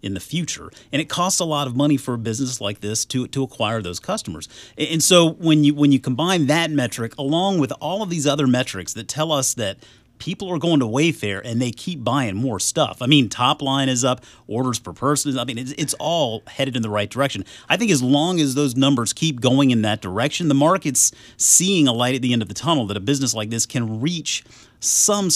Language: English